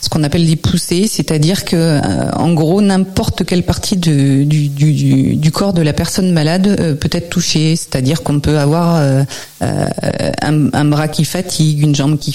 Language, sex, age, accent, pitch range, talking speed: French, female, 40-59, French, 150-175 Hz, 175 wpm